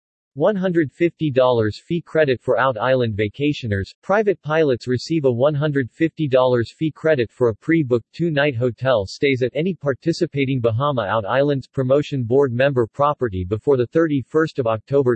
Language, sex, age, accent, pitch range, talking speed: English, male, 40-59, American, 115-150 Hz, 120 wpm